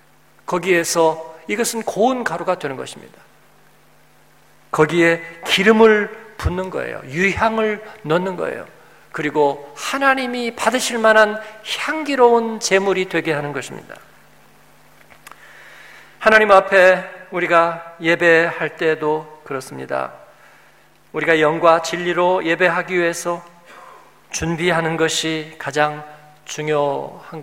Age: 40-59